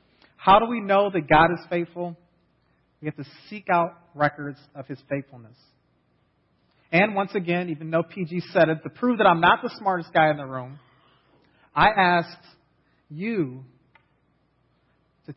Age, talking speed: 40-59, 155 wpm